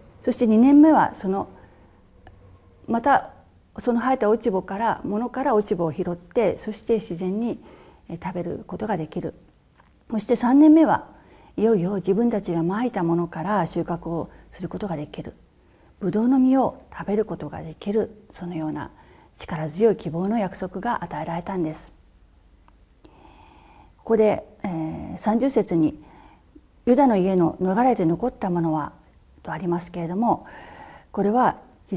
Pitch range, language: 165-225 Hz, Japanese